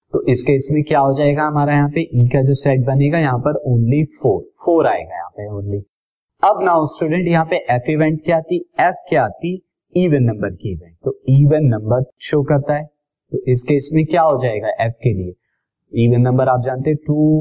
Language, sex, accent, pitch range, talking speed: Hindi, male, native, 130-160 Hz, 200 wpm